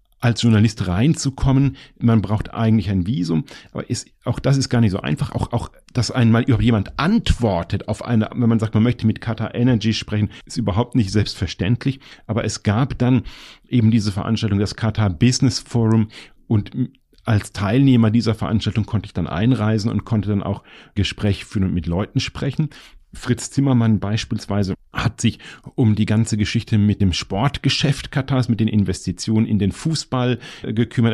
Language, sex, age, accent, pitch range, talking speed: German, male, 40-59, German, 105-125 Hz, 170 wpm